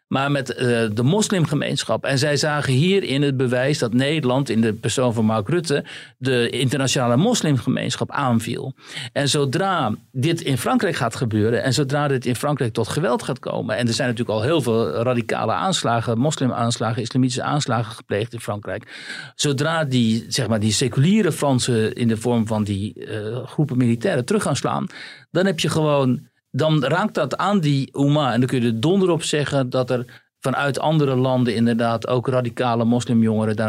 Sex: male